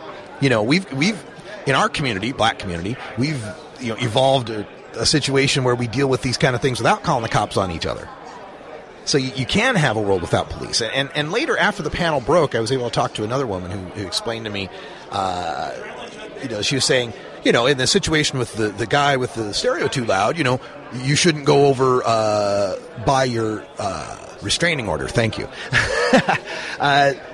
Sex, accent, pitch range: male, American, 130-175 Hz